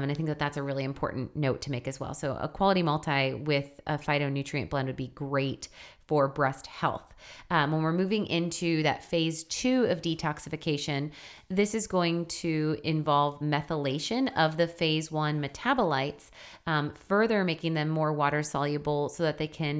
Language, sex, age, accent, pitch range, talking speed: English, female, 30-49, American, 145-170 Hz, 180 wpm